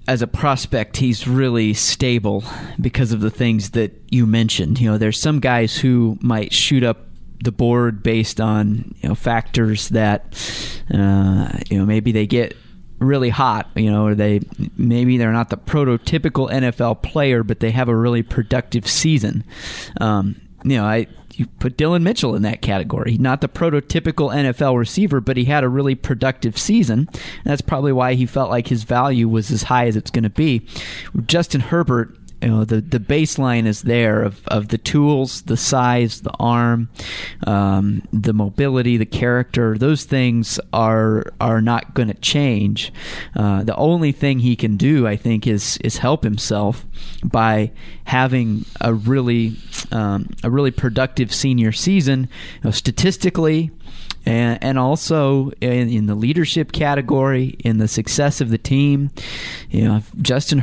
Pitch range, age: 110-135 Hz, 30-49